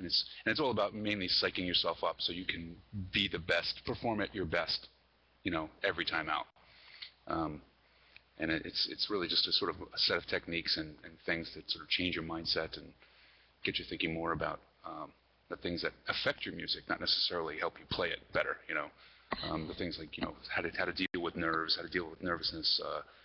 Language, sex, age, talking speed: English, male, 30-49, 230 wpm